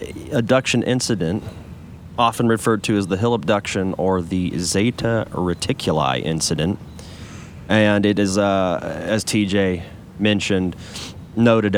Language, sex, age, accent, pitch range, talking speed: English, male, 30-49, American, 85-110 Hz, 110 wpm